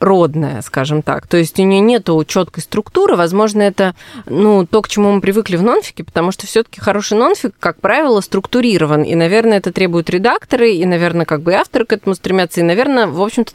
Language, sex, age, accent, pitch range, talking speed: Russian, female, 20-39, native, 165-215 Hz, 205 wpm